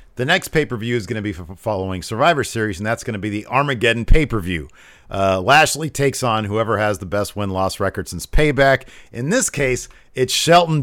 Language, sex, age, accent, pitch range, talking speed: English, male, 40-59, American, 110-155 Hz, 195 wpm